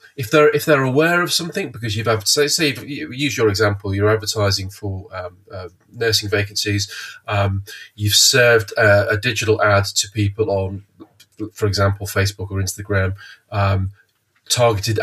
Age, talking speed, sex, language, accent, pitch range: 30-49, 165 wpm, male, English, British, 100-115 Hz